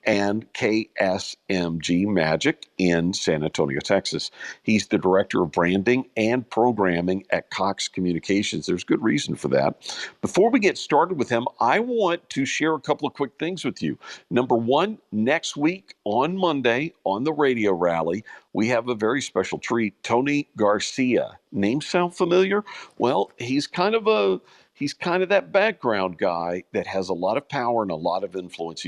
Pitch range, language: 90-145 Hz, English